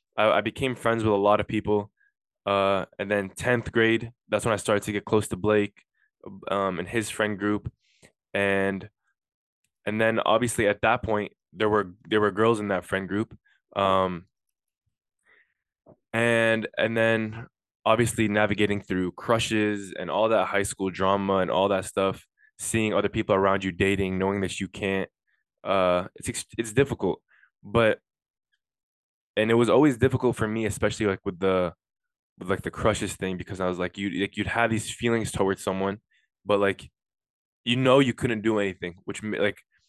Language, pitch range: English, 95-115 Hz